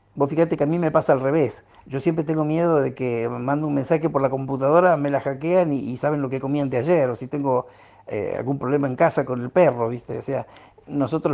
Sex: male